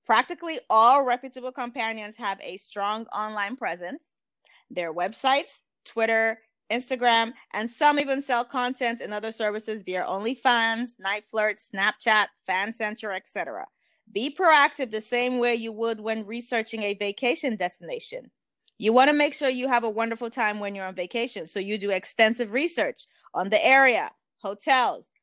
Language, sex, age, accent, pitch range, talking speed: English, female, 20-39, American, 215-270 Hz, 145 wpm